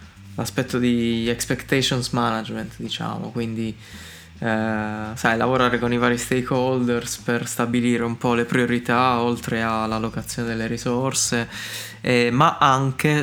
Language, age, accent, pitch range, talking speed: Italian, 20-39, native, 110-130 Hz, 120 wpm